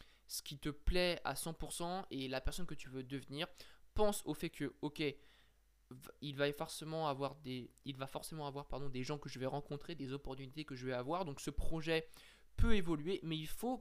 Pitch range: 135-165 Hz